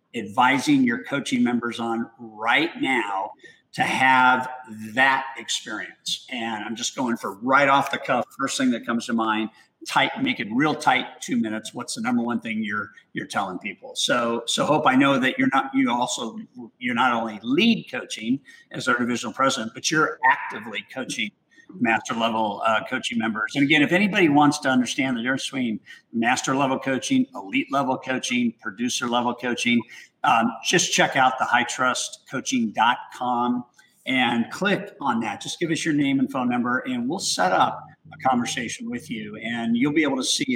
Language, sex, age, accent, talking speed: English, male, 50-69, American, 180 wpm